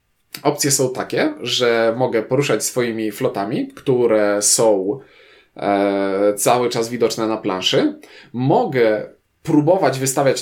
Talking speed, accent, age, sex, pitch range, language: 110 wpm, native, 20-39, male, 115-145 Hz, Polish